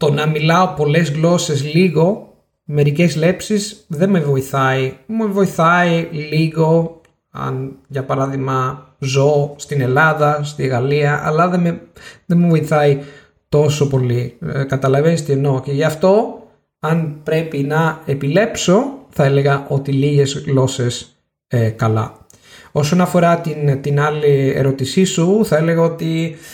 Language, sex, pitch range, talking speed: Greek, male, 135-175 Hz, 130 wpm